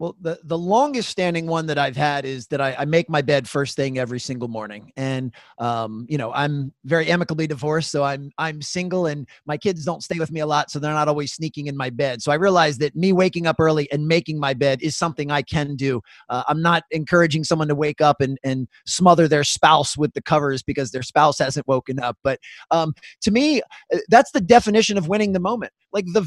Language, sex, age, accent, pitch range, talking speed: English, male, 30-49, American, 145-180 Hz, 235 wpm